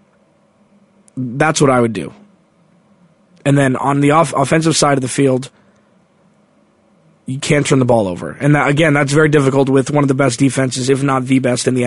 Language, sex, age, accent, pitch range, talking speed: English, male, 20-39, American, 130-160 Hz, 185 wpm